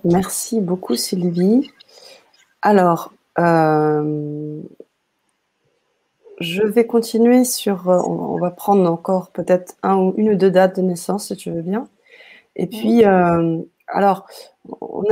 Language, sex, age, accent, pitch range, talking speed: French, female, 30-49, French, 170-215 Hz, 130 wpm